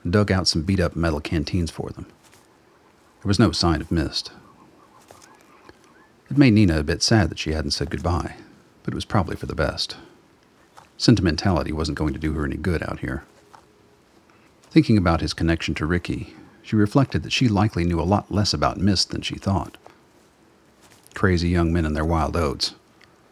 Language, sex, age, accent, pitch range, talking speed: English, male, 40-59, American, 80-105 Hz, 180 wpm